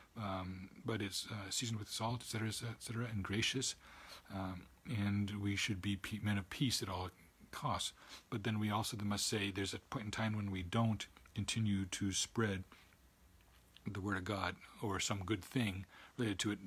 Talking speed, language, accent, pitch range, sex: 185 wpm, English, American, 95-110 Hz, male